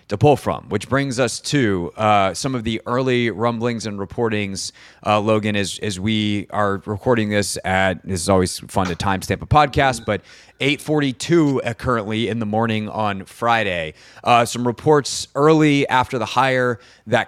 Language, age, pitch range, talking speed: English, 30-49, 100-125 Hz, 165 wpm